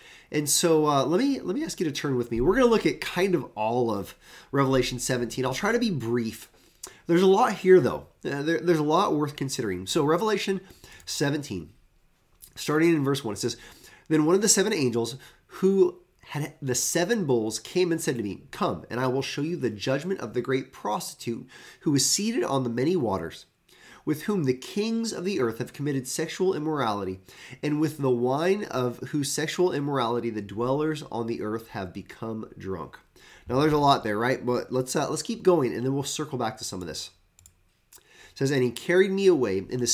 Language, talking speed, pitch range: English, 215 wpm, 120-170 Hz